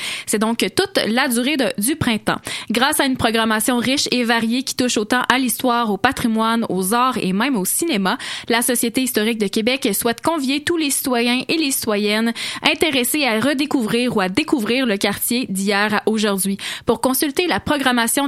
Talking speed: 185 wpm